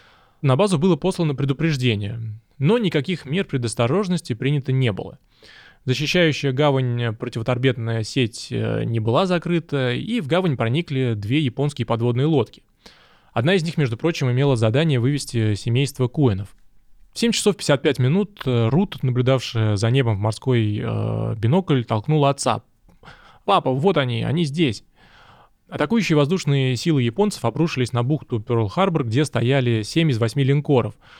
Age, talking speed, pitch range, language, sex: 20-39, 140 wpm, 115-155 Hz, Russian, male